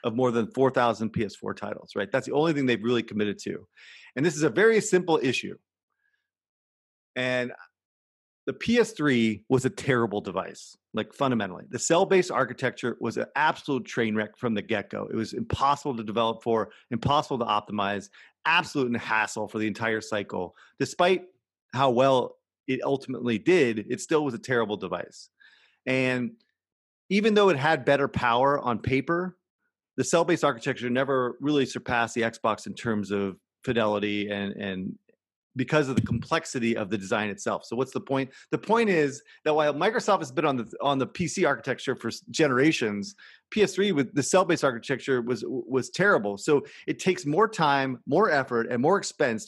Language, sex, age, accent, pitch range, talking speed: English, male, 30-49, American, 115-145 Hz, 165 wpm